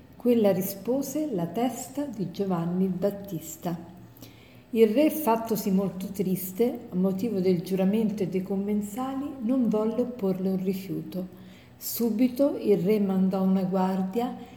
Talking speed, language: 130 wpm, Italian